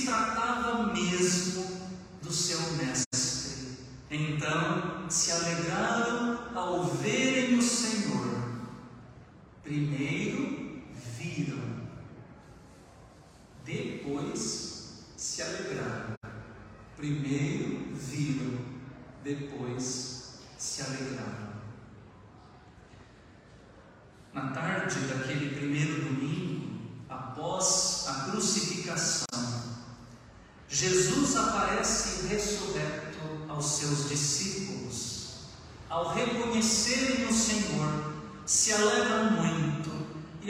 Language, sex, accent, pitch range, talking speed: Portuguese, male, Brazilian, 130-210 Hz, 65 wpm